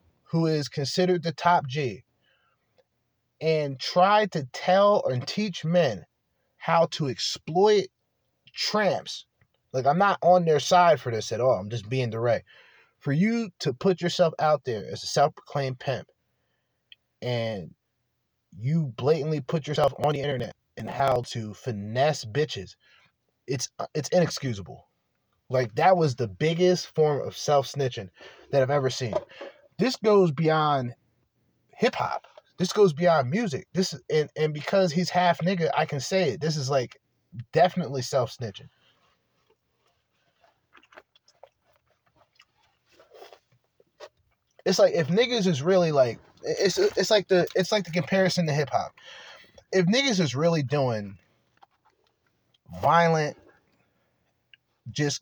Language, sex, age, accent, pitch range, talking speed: English, male, 30-49, American, 130-180 Hz, 135 wpm